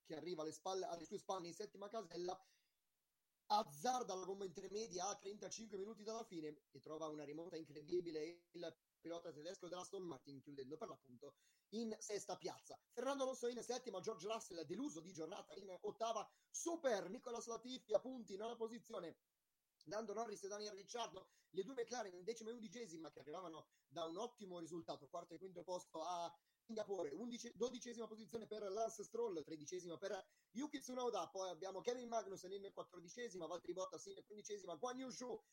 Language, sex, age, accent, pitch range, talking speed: Italian, male, 30-49, native, 170-230 Hz, 165 wpm